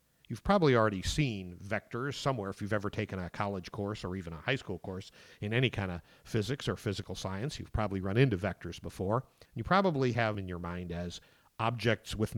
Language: English